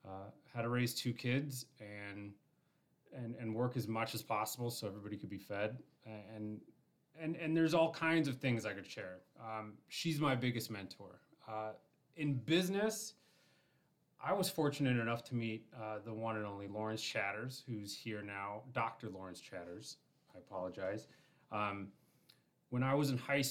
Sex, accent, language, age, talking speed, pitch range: male, American, English, 30-49, 165 wpm, 105-130 Hz